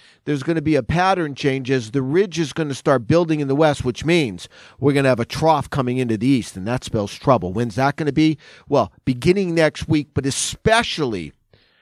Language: English